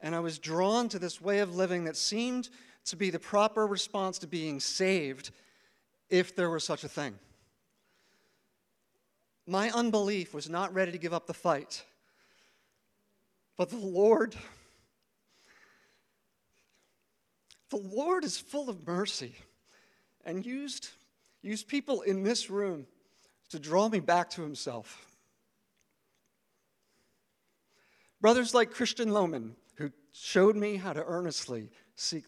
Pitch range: 150-200 Hz